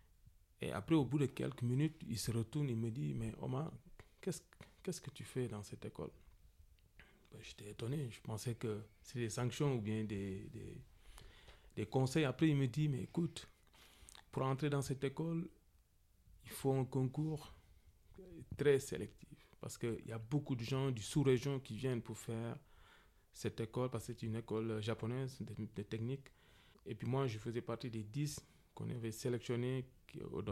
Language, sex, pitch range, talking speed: French, male, 105-130 Hz, 185 wpm